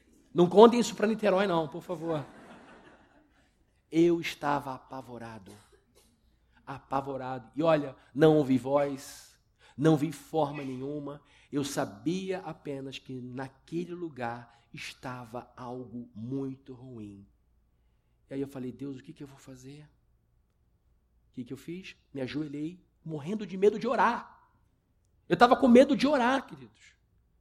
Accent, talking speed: Brazilian, 135 wpm